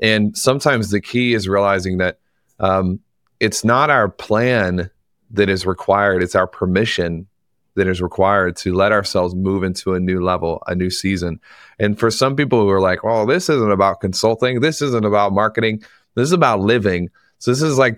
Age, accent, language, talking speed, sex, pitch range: 30-49, American, English, 185 wpm, male, 95-110 Hz